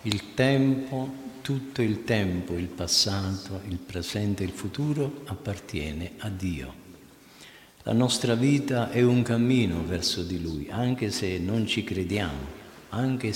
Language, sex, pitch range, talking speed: Italian, male, 90-120 Hz, 135 wpm